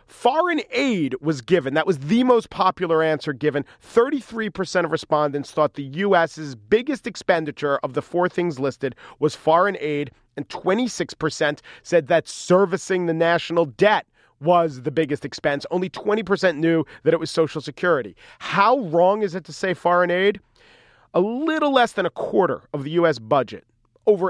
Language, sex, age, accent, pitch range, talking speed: English, male, 40-59, American, 150-210 Hz, 165 wpm